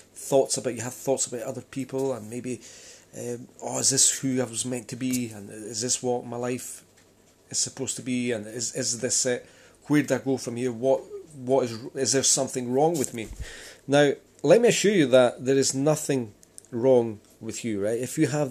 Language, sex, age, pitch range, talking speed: English, male, 30-49, 120-155 Hz, 215 wpm